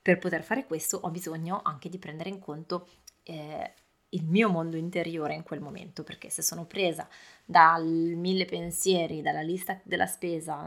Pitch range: 170-195 Hz